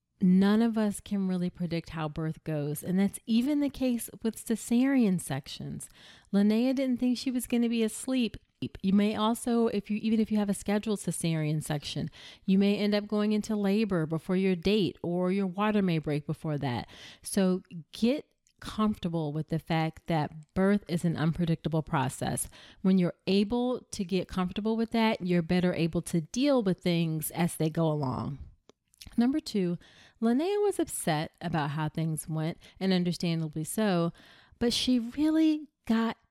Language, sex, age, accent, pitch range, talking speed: English, female, 30-49, American, 165-220 Hz, 170 wpm